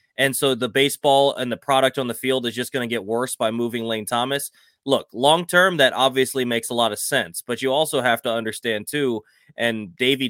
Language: English